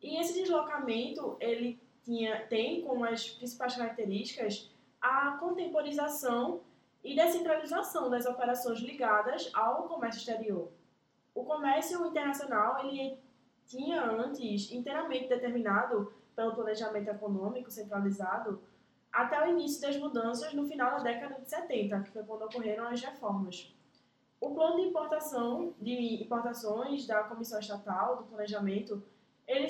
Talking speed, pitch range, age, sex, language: 125 wpm, 225-295 Hz, 10-29, female, Portuguese